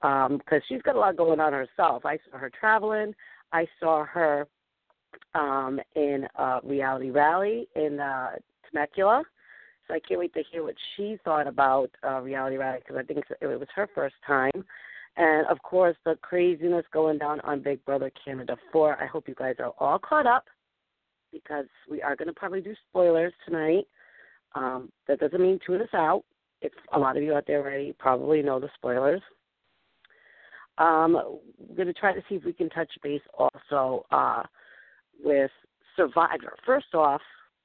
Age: 40-59